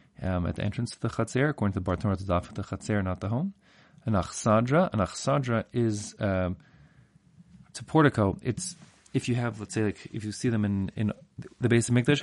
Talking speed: 210 wpm